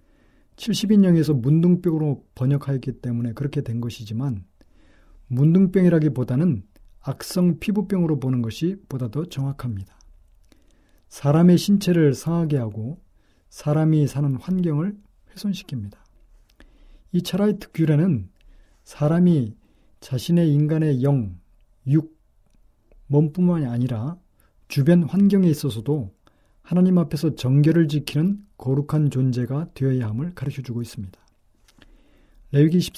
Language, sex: Korean, male